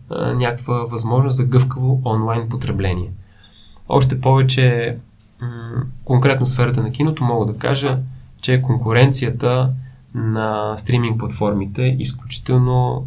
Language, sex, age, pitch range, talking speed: Bulgarian, male, 20-39, 110-130 Hz, 95 wpm